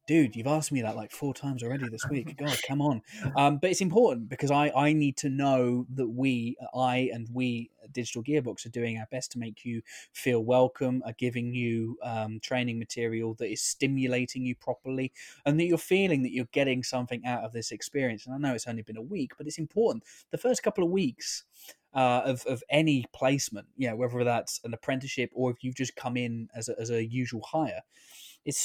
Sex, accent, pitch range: male, British, 120-145 Hz